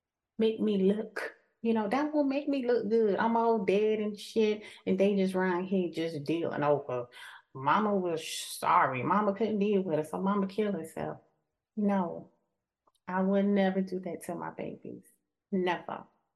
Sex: female